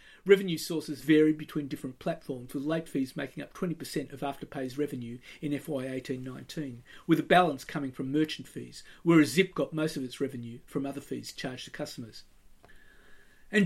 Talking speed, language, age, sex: 170 wpm, English, 40-59, male